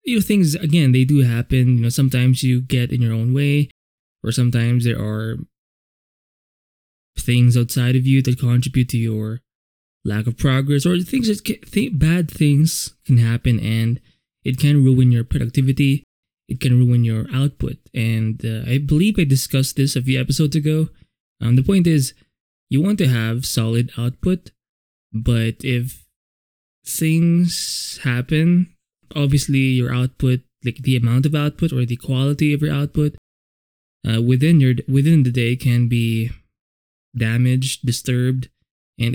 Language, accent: English, Filipino